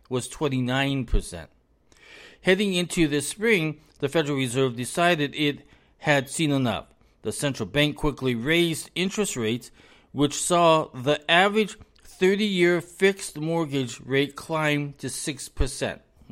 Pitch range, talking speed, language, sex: 125-160 Hz, 120 wpm, English, male